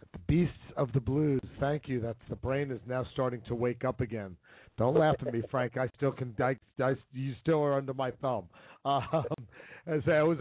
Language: English